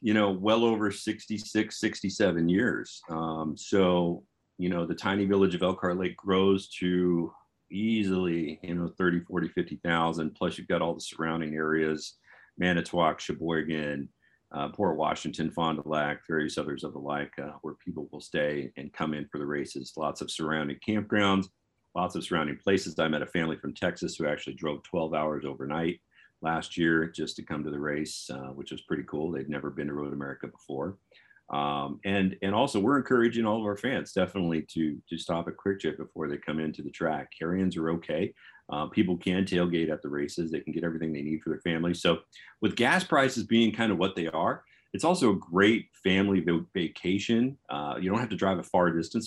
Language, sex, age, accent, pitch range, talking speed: English, male, 40-59, American, 75-100 Hz, 200 wpm